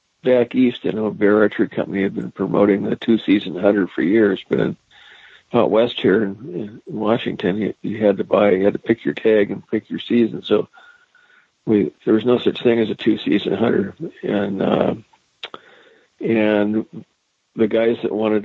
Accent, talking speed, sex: American, 175 wpm, male